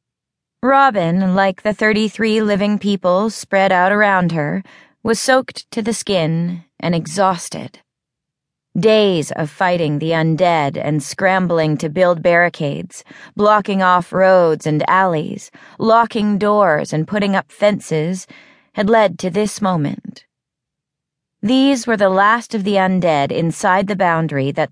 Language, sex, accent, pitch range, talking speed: English, female, American, 160-215 Hz, 130 wpm